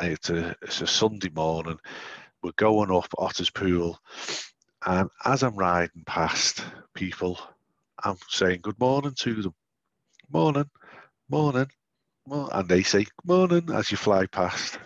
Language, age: English, 50-69